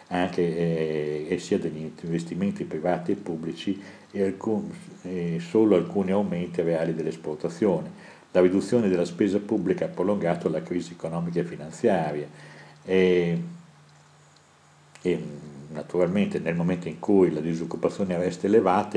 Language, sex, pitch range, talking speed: Italian, male, 80-95 Hz, 125 wpm